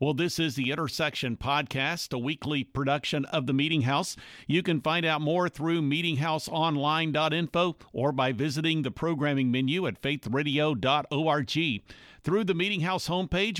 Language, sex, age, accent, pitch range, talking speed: English, male, 50-69, American, 140-170 Hz, 145 wpm